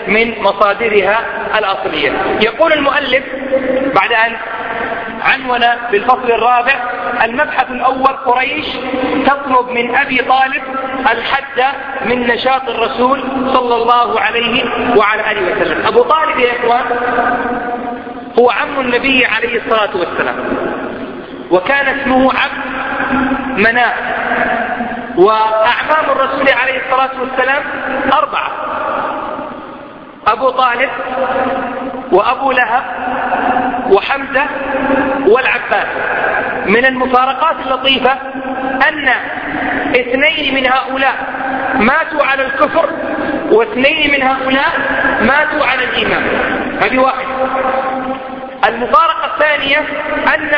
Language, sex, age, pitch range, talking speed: English, male, 40-59, 245-275 Hz, 90 wpm